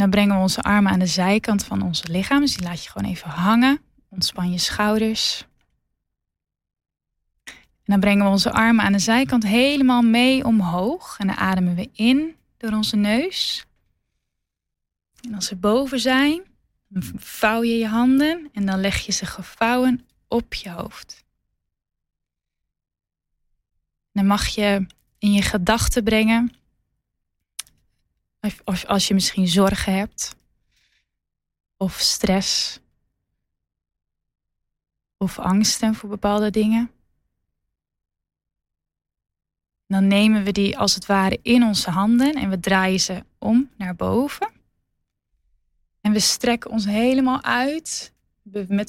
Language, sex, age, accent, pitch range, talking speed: Dutch, female, 20-39, Dutch, 195-230 Hz, 130 wpm